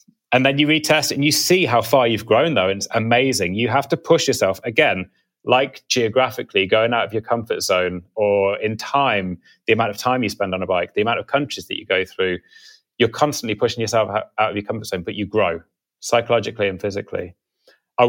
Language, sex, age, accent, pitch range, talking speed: English, male, 30-49, British, 95-125 Hz, 210 wpm